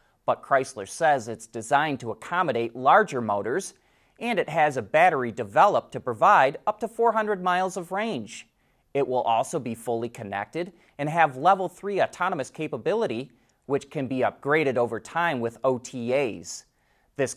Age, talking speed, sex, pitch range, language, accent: 30-49, 150 wpm, male, 135-195 Hz, English, American